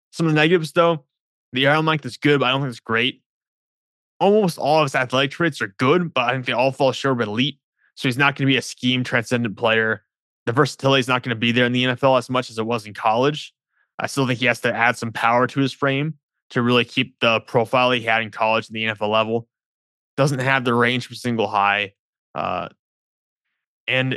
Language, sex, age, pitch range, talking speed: English, male, 20-39, 120-140 Hz, 235 wpm